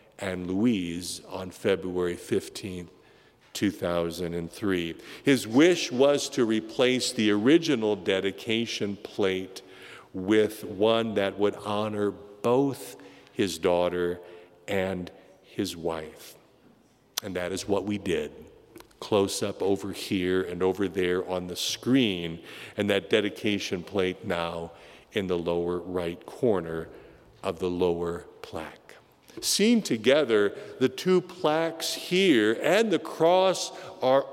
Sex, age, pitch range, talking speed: male, 50-69, 90-140 Hz, 115 wpm